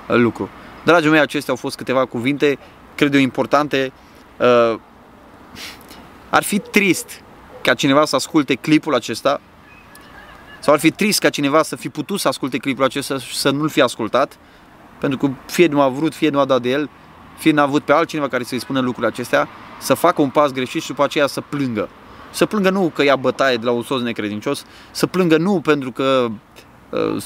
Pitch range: 120-150 Hz